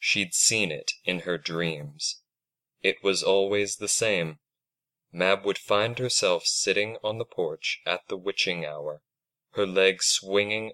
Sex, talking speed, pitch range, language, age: male, 145 wpm, 95-155 Hz, English, 20-39